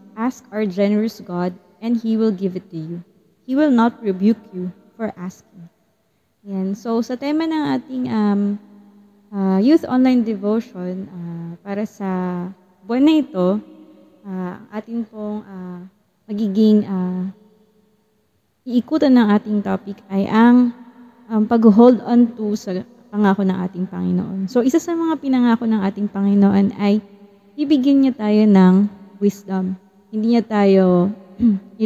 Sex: female